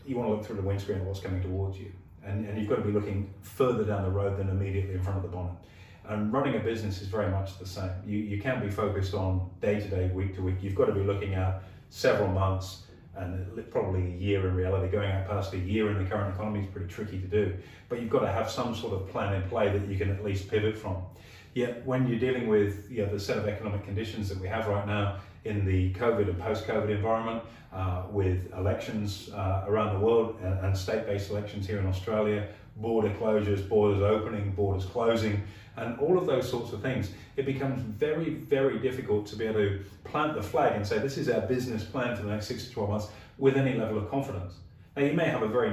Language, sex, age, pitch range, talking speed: English, male, 30-49, 95-115 Hz, 235 wpm